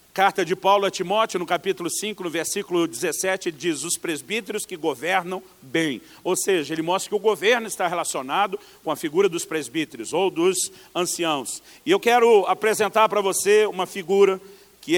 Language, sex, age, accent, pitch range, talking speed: Portuguese, male, 50-69, Brazilian, 180-225 Hz, 170 wpm